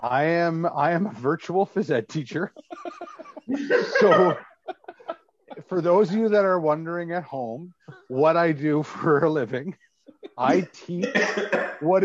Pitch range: 125-175 Hz